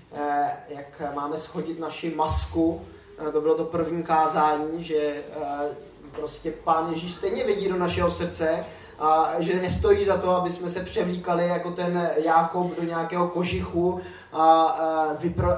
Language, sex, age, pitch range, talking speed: Czech, male, 20-39, 155-180 Hz, 135 wpm